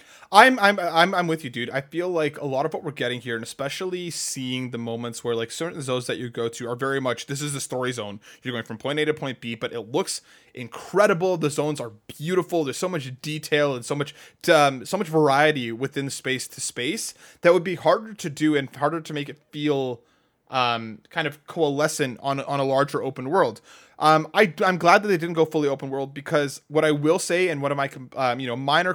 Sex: male